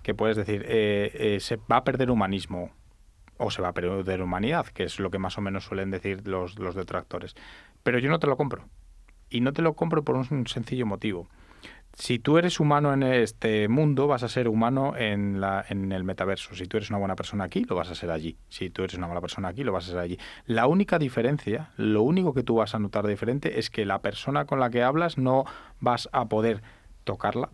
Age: 30-49